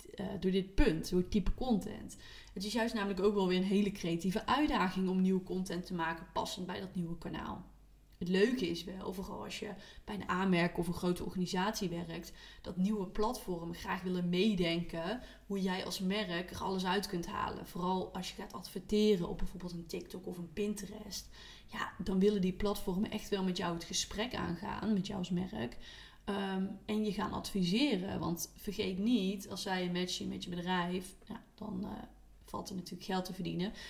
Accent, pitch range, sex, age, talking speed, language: Dutch, 180-210 Hz, female, 20-39, 195 wpm, Dutch